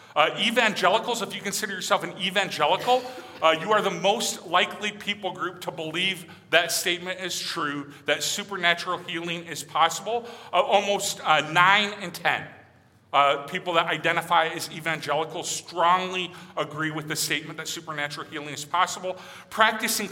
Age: 40-59